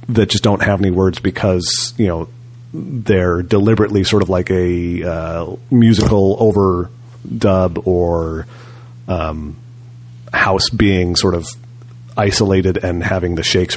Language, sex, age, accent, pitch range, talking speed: English, male, 30-49, American, 90-120 Hz, 130 wpm